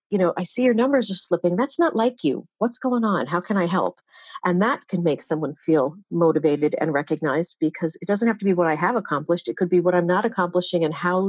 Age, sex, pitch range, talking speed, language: 50-69, female, 170-215 Hz, 250 wpm, English